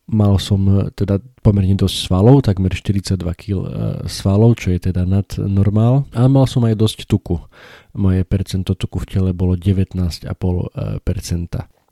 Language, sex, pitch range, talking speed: Slovak, male, 90-110 Hz, 140 wpm